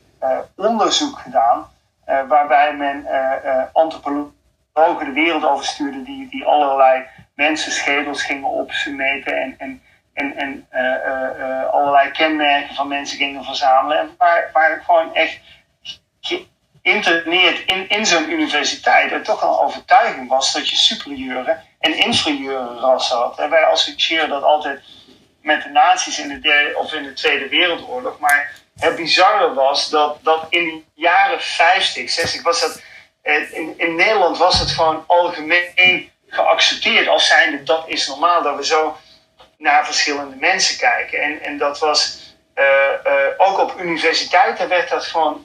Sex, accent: male, Dutch